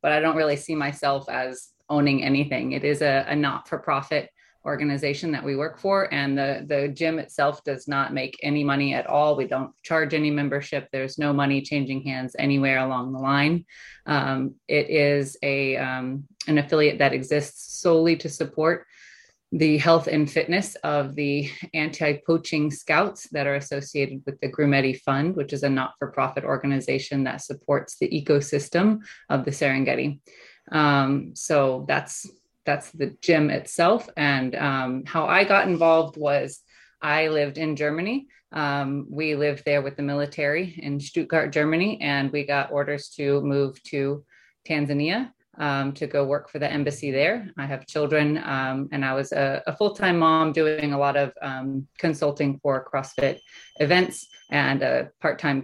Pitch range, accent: 140-155 Hz, American